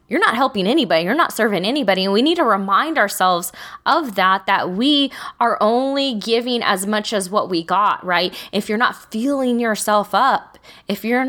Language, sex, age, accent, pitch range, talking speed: English, female, 20-39, American, 195-235 Hz, 190 wpm